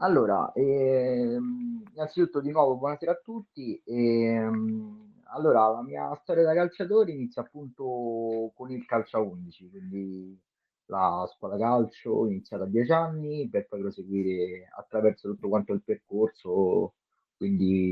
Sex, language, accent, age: male, Italian, native, 30-49